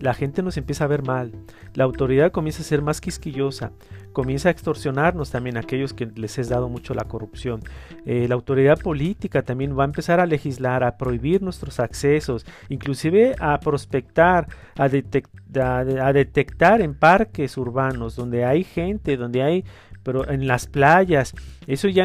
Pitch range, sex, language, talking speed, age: 130-180 Hz, male, Spanish, 170 wpm, 40-59